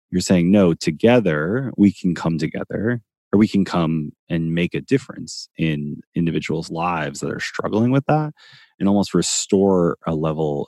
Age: 30-49